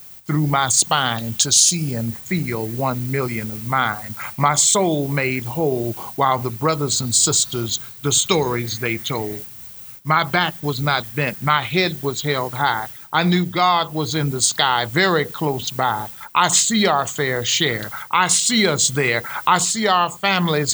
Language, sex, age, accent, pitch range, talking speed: English, male, 50-69, American, 135-180 Hz, 165 wpm